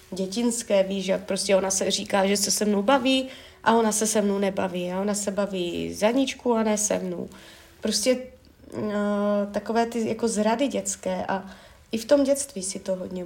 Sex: female